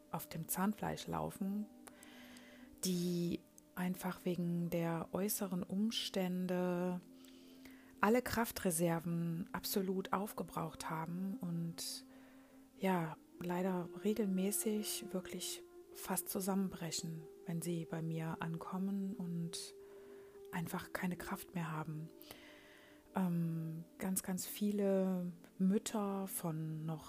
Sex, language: female, German